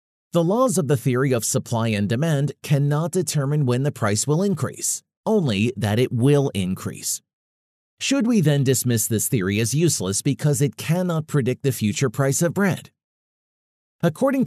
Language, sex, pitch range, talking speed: English, male, 115-150 Hz, 160 wpm